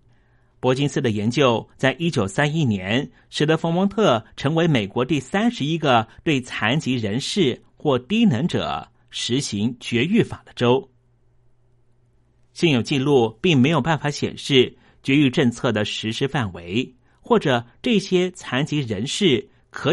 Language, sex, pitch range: Chinese, male, 120-145 Hz